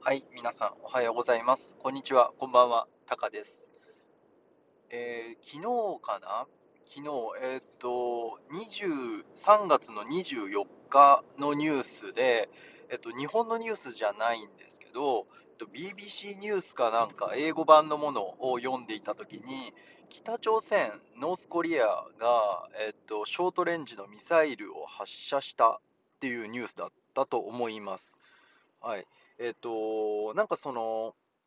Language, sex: Japanese, male